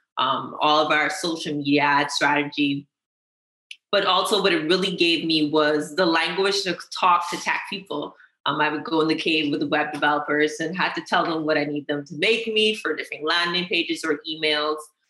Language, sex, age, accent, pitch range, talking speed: English, female, 20-39, American, 150-185 Hz, 205 wpm